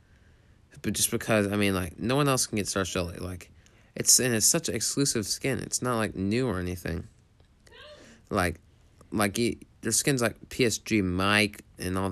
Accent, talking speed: American, 185 wpm